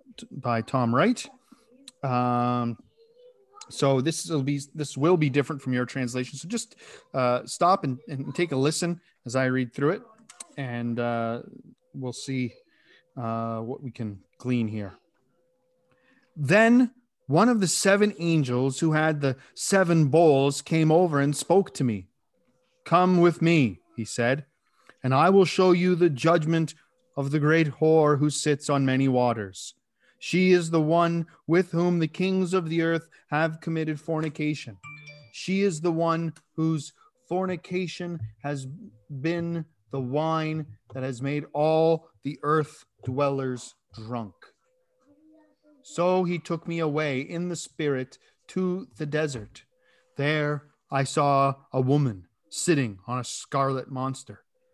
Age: 30-49